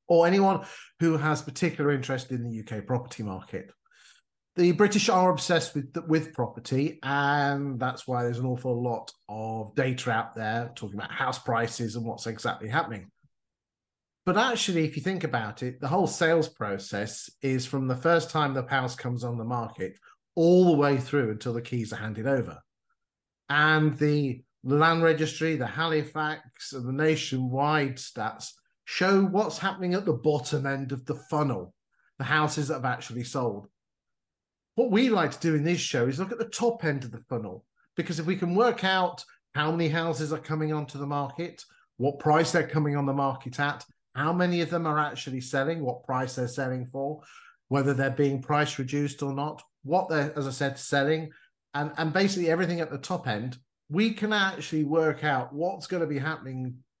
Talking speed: 185 wpm